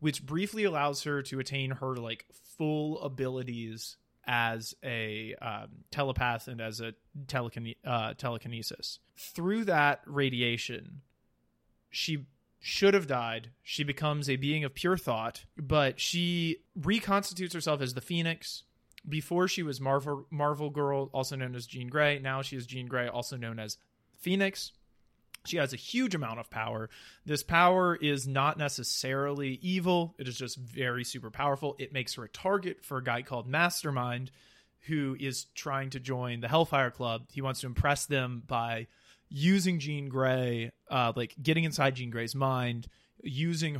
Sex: male